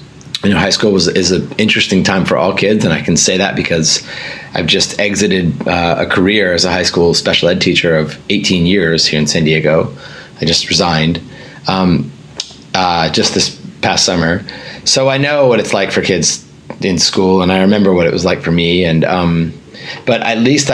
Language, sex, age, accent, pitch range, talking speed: English, male, 30-49, American, 85-105 Hz, 205 wpm